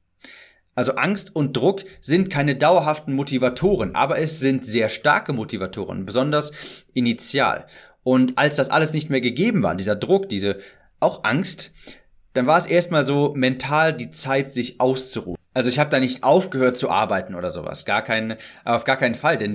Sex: male